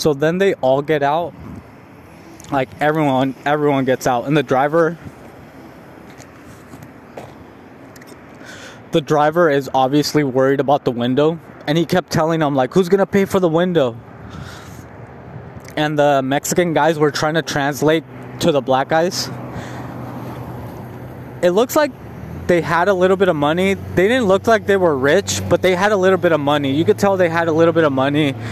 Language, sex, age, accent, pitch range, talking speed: English, male, 20-39, American, 130-165 Hz, 170 wpm